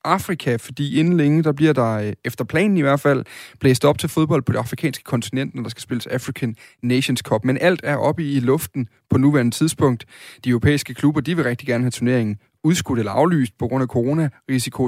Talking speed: 210 wpm